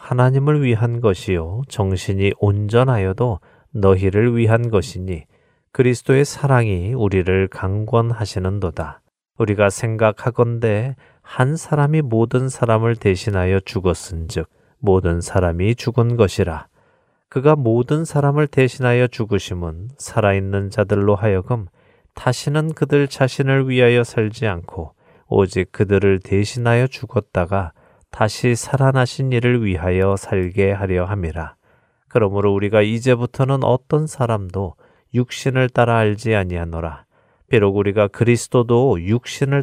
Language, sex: Korean, male